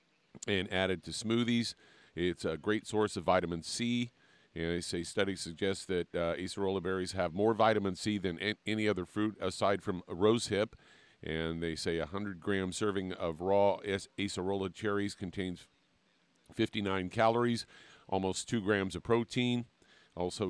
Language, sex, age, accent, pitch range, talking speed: English, male, 50-69, American, 90-105 Hz, 160 wpm